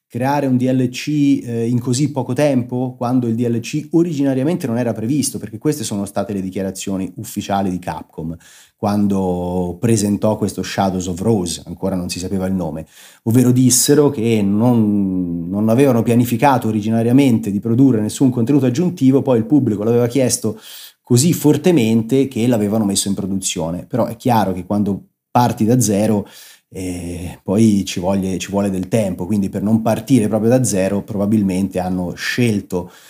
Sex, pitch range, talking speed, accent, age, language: male, 95-125 Hz, 155 wpm, native, 30-49, Italian